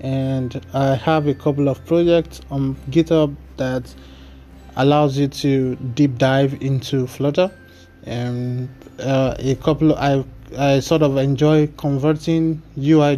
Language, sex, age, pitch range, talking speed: English, male, 20-39, 130-155 Hz, 130 wpm